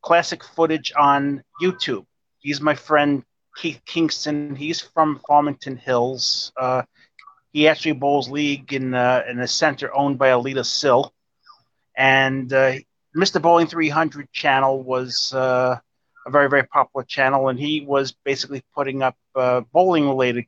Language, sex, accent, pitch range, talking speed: English, male, American, 130-150 Hz, 145 wpm